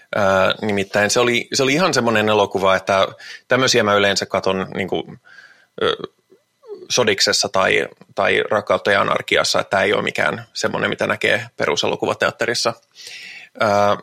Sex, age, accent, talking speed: male, 20-39, native, 115 wpm